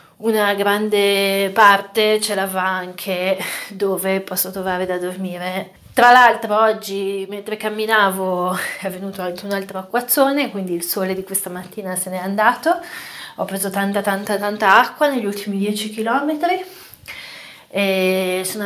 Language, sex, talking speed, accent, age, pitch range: Italian, female, 140 wpm, native, 30-49, 185-215 Hz